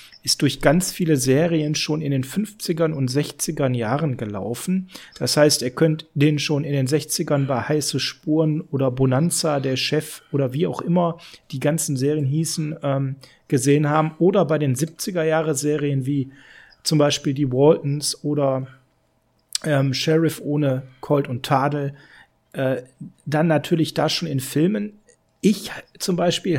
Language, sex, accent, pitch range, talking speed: German, male, German, 130-160 Hz, 150 wpm